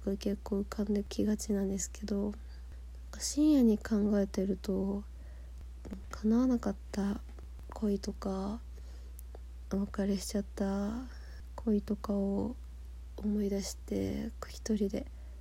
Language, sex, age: Japanese, female, 20-39